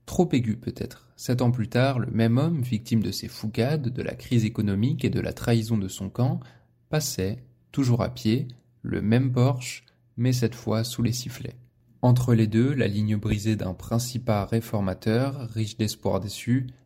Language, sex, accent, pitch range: French, male, French, 110-125 Hz